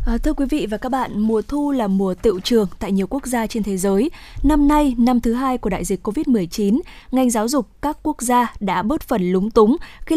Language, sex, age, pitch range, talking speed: Vietnamese, female, 10-29, 210-265 Hz, 235 wpm